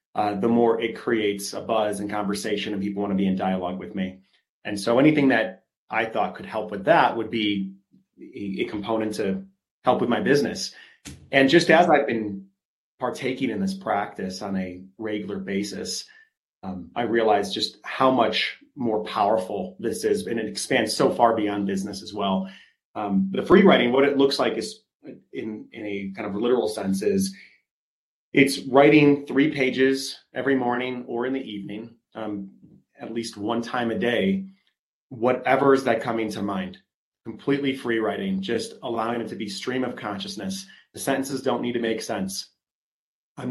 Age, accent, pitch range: 30-49, American, 105-140 Hz